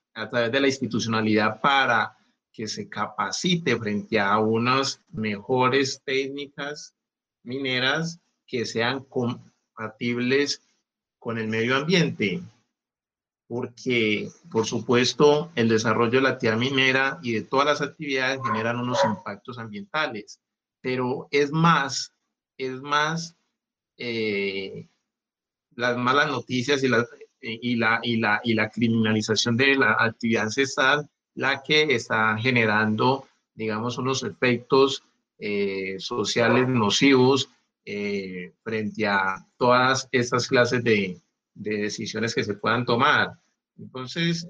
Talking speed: 115 wpm